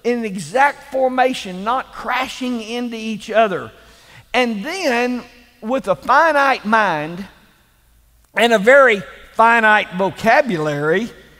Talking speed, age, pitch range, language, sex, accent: 100 wpm, 50-69, 185-260 Hz, English, male, American